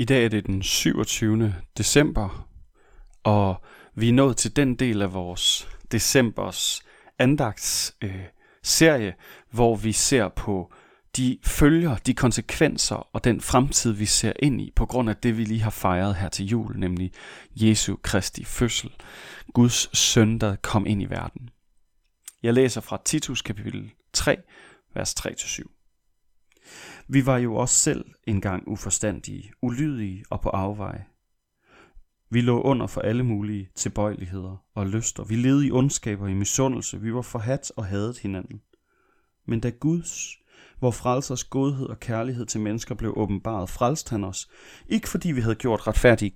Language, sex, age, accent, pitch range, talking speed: Danish, male, 30-49, native, 100-125 Hz, 150 wpm